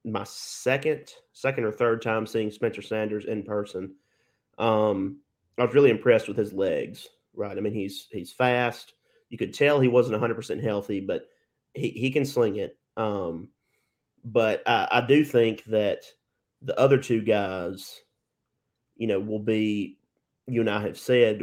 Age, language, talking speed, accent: 30-49, English, 165 wpm, American